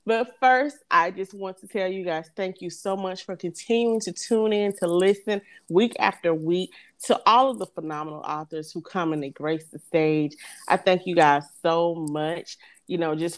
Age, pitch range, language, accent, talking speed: 30-49, 160-200 Hz, English, American, 200 wpm